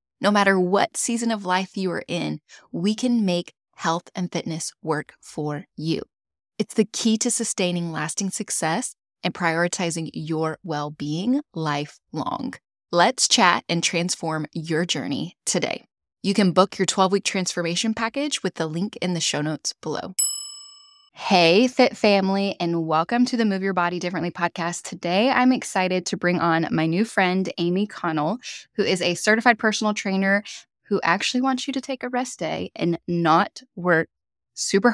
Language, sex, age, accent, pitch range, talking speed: English, female, 10-29, American, 170-210 Hz, 160 wpm